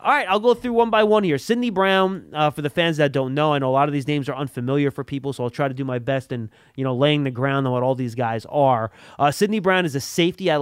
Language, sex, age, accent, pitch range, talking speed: English, male, 30-49, American, 130-175 Hz, 310 wpm